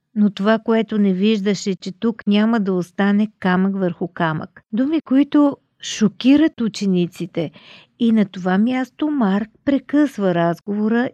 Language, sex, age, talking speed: Bulgarian, female, 50-69, 130 wpm